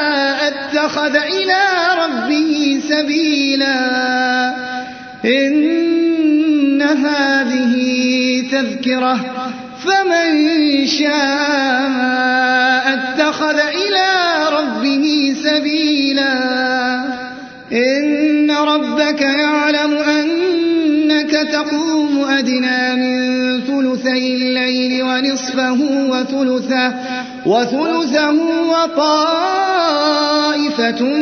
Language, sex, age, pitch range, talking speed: Arabic, male, 30-49, 255-300 Hz, 50 wpm